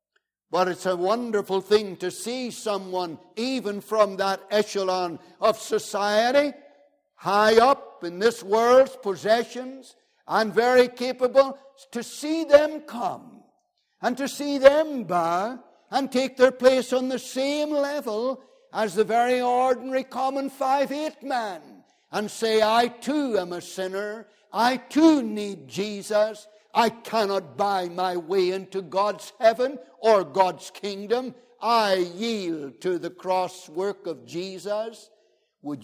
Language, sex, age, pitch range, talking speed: English, male, 60-79, 195-265 Hz, 130 wpm